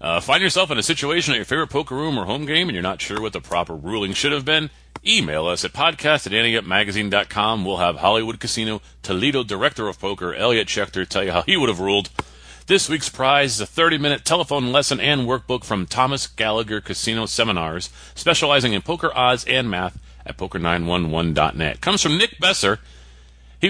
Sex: male